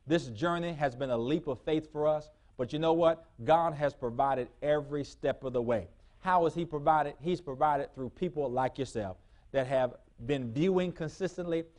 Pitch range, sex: 130-160 Hz, male